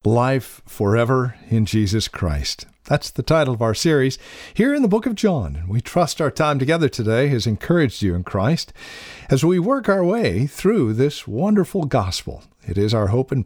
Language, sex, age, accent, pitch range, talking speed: English, male, 50-69, American, 110-155 Hz, 190 wpm